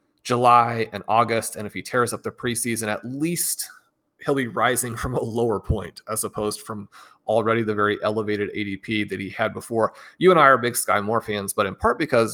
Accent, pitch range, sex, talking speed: American, 110-130 Hz, male, 210 wpm